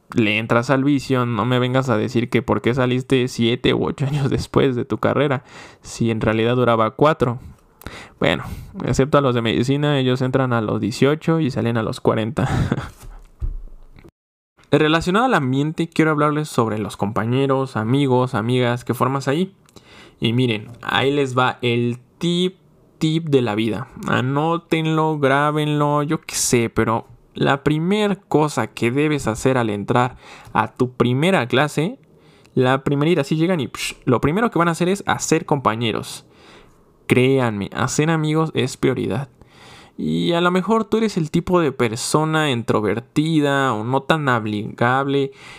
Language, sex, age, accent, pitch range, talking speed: Spanish, male, 20-39, Mexican, 120-155 Hz, 160 wpm